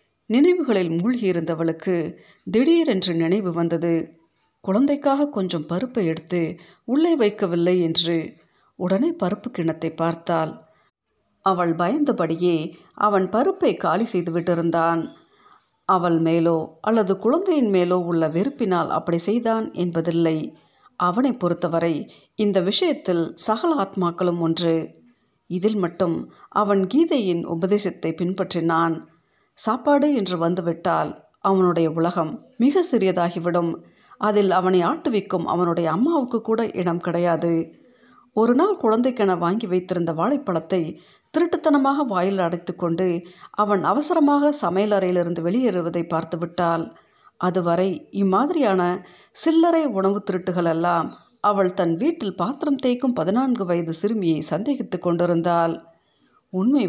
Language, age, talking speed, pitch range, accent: Tamil, 50-69, 95 wpm, 170-230 Hz, native